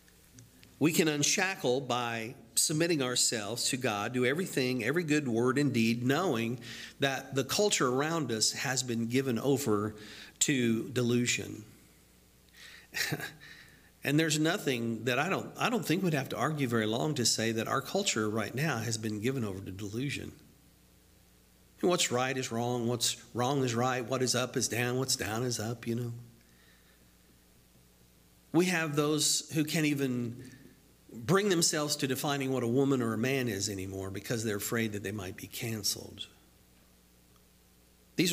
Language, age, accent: English, 50-69, American